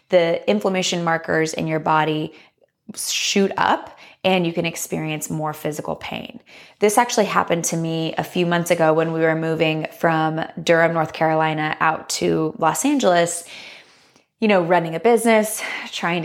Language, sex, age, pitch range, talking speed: English, female, 20-39, 165-195 Hz, 155 wpm